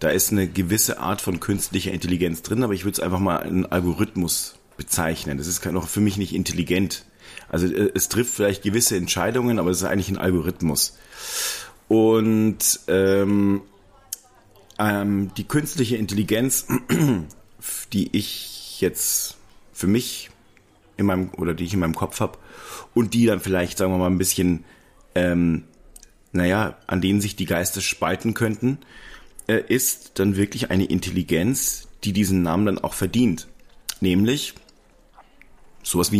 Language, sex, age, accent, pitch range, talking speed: German, male, 40-59, German, 90-110 Hz, 150 wpm